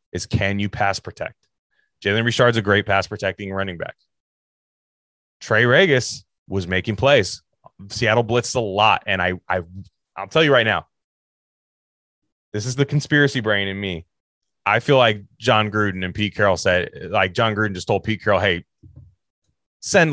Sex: male